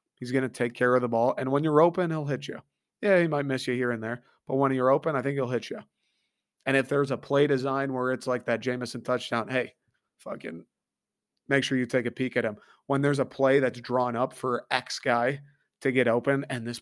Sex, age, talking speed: male, 30-49, 245 wpm